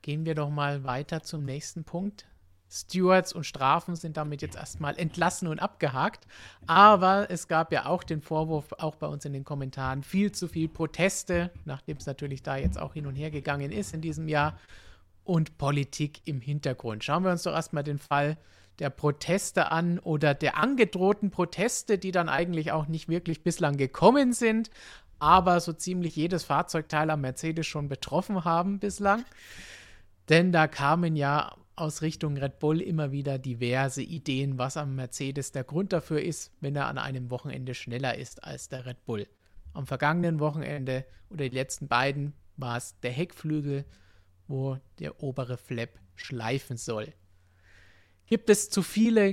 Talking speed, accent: 170 wpm, German